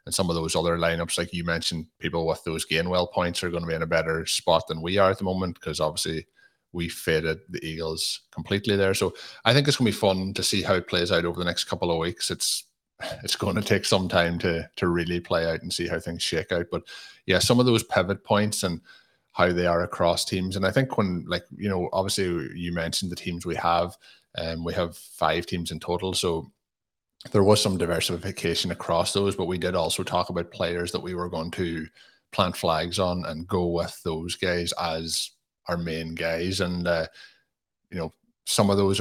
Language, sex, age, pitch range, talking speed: English, male, 30-49, 85-95 Hz, 225 wpm